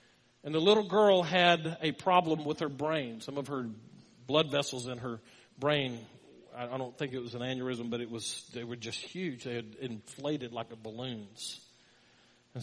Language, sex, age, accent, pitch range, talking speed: English, male, 40-59, American, 120-175 Hz, 185 wpm